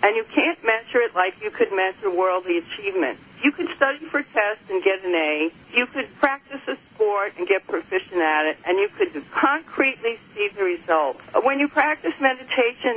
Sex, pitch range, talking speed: female, 205-280 Hz, 190 wpm